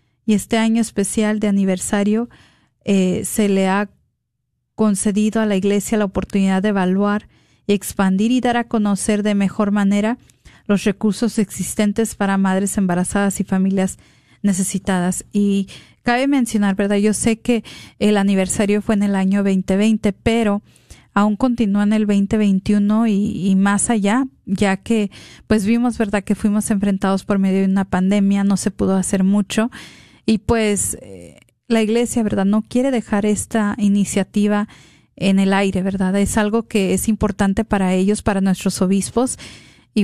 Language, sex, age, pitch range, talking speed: Spanish, female, 40-59, 195-220 Hz, 155 wpm